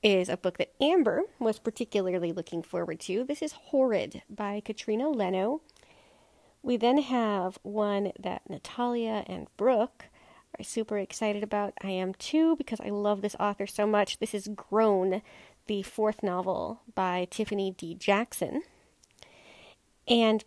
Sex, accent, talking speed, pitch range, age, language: female, American, 145 wpm, 195-240 Hz, 30-49, English